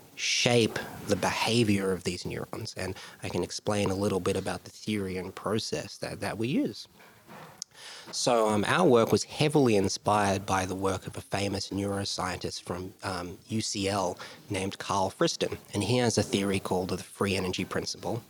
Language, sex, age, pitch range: Danish, male, 30-49, 95-110 Hz